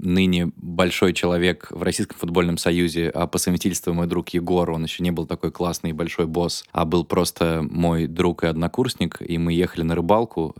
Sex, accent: male, native